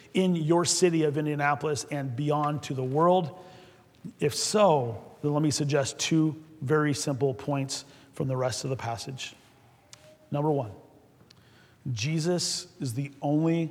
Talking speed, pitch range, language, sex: 140 wpm, 140-190 Hz, English, male